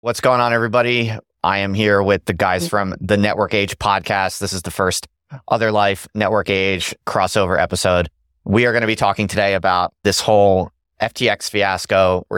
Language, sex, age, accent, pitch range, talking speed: English, male, 30-49, American, 90-110 Hz, 185 wpm